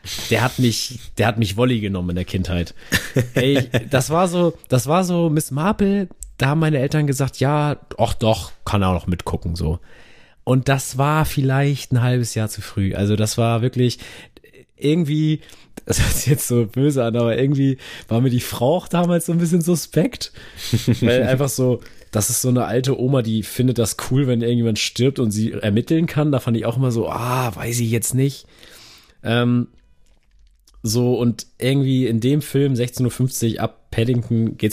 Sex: male